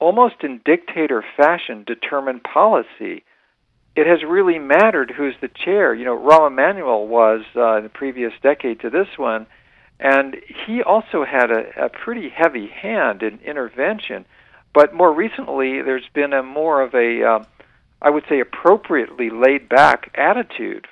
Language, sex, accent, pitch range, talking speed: English, male, American, 125-155 Hz, 150 wpm